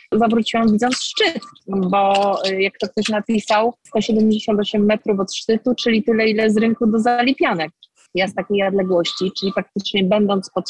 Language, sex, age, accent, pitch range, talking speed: Polish, female, 30-49, native, 195-230 Hz, 150 wpm